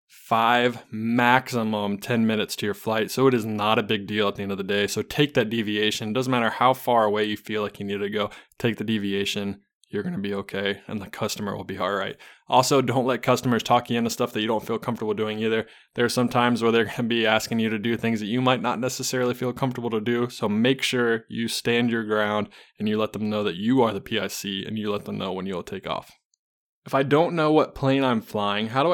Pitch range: 110-125 Hz